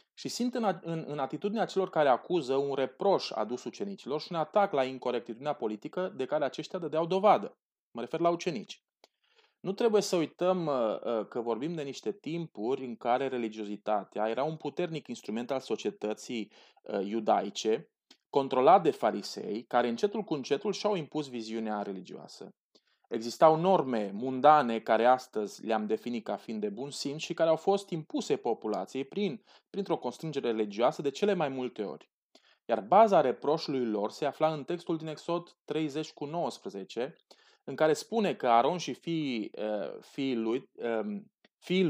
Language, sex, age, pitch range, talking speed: Romanian, male, 30-49, 120-175 Hz, 145 wpm